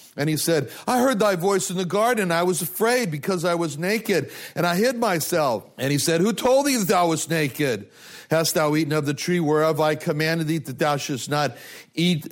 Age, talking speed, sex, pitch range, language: 60-79, 225 wpm, male, 135-180 Hz, English